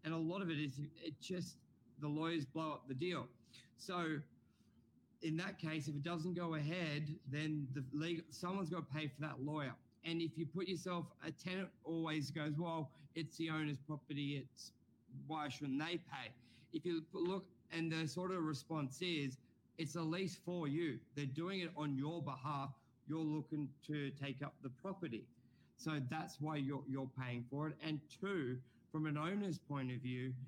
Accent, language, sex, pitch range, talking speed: Australian, English, male, 135-165 Hz, 185 wpm